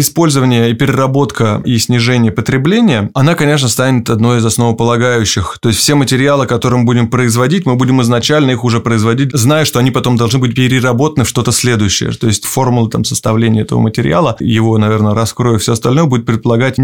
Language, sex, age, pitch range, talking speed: Russian, male, 20-39, 115-140 Hz, 180 wpm